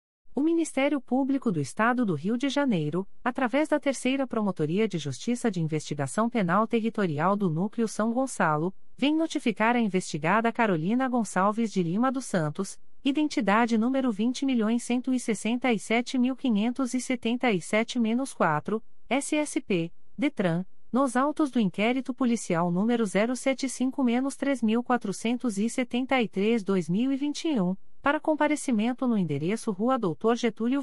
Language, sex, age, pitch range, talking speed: Portuguese, female, 40-59, 195-265 Hz, 100 wpm